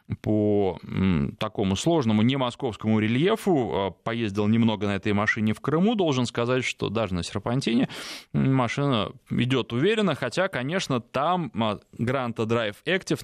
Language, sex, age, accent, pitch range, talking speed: Russian, male, 20-39, native, 110-140 Hz, 120 wpm